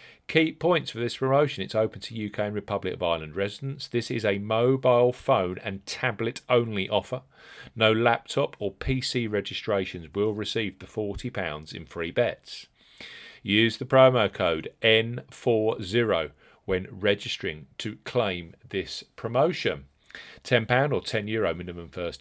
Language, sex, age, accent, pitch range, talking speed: English, male, 40-59, British, 100-130 Hz, 140 wpm